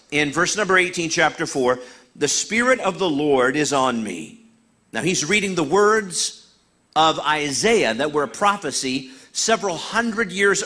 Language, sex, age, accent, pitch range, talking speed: English, male, 50-69, American, 145-190 Hz, 160 wpm